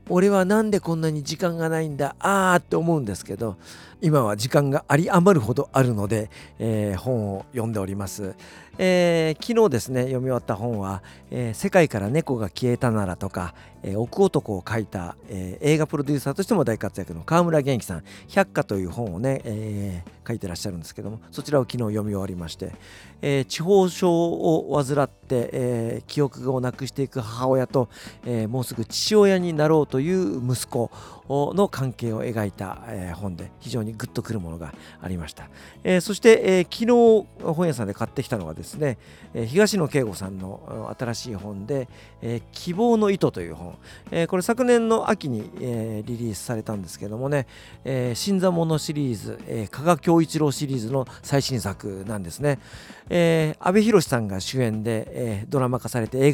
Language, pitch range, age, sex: Japanese, 105-160 Hz, 50-69, male